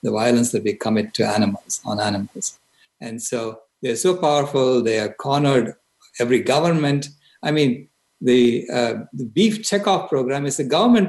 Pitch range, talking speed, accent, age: 125-200 Hz, 160 wpm, Indian, 60-79